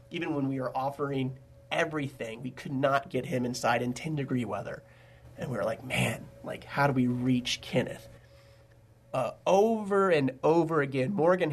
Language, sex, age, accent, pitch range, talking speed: English, male, 30-49, American, 125-155 Hz, 165 wpm